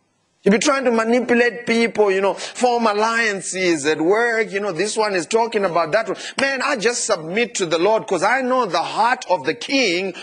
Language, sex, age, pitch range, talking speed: English, male, 40-59, 150-230 Hz, 205 wpm